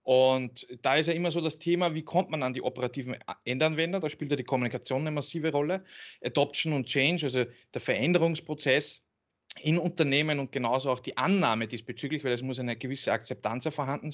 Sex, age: male, 20-39